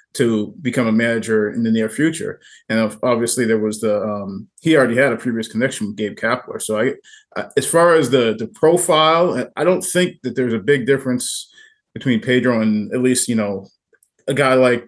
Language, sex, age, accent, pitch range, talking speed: English, male, 30-49, American, 110-125 Hz, 200 wpm